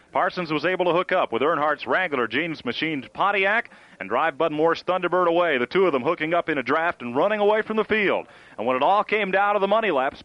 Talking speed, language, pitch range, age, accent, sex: 245 wpm, English, 155-195 Hz, 40-59, American, male